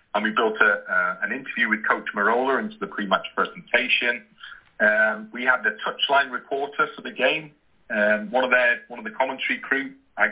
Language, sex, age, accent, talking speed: English, male, 40-59, British, 175 wpm